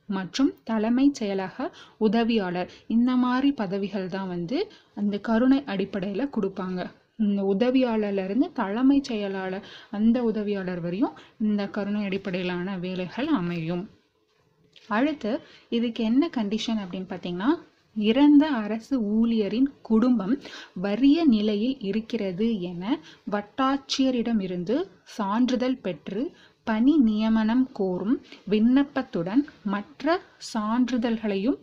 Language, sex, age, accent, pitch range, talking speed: Tamil, female, 20-39, native, 195-260 Hz, 95 wpm